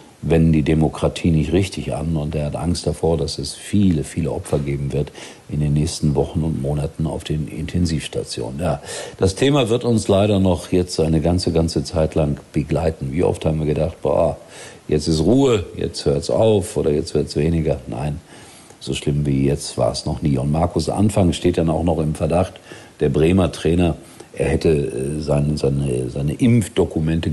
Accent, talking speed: German, 190 wpm